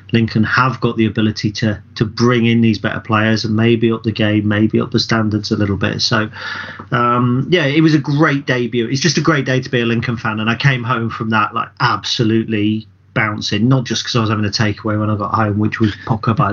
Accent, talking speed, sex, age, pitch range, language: British, 245 wpm, male, 40-59, 110-130 Hz, English